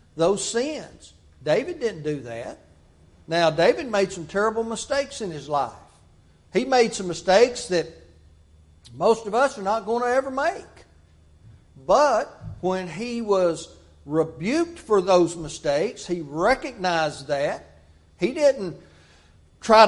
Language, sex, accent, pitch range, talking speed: English, male, American, 155-220 Hz, 130 wpm